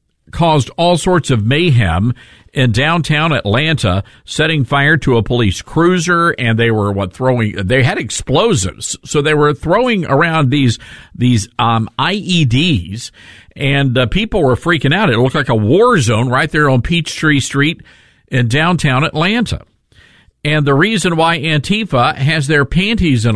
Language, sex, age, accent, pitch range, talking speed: English, male, 50-69, American, 120-160 Hz, 155 wpm